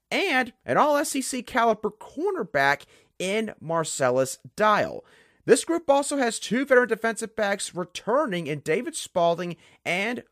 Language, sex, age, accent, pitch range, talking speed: English, male, 30-49, American, 165-255 Hz, 120 wpm